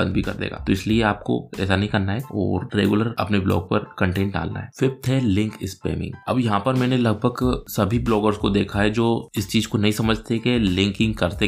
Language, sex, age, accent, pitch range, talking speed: Hindi, male, 20-39, native, 95-110 Hz, 135 wpm